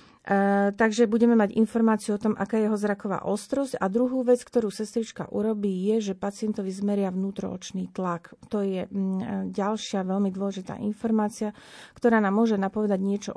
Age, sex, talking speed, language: 40-59, female, 155 wpm, Slovak